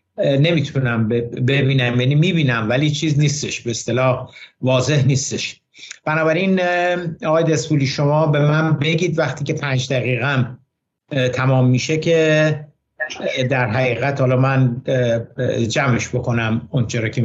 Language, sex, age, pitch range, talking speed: Persian, male, 60-79, 120-150 Hz, 115 wpm